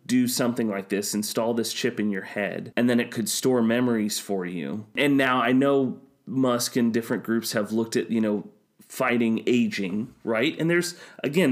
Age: 30-49